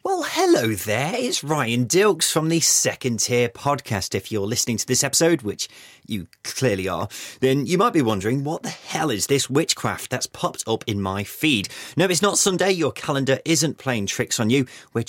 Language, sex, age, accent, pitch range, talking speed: English, male, 30-49, British, 110-160 Hz, 200 wpm